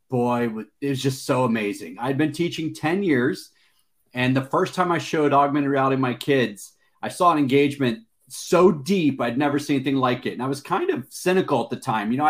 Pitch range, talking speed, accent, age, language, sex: 135-180 Hz, 220 wpm, American, 40-59, English, male